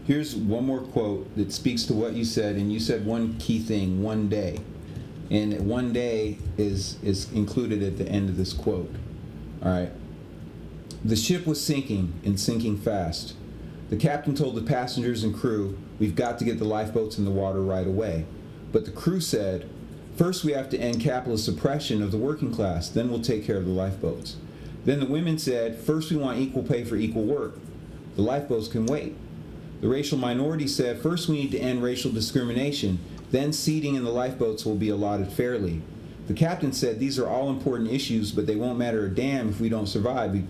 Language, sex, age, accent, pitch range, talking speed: English, male, 40-59, American, 105-140 Hz, 200 wpm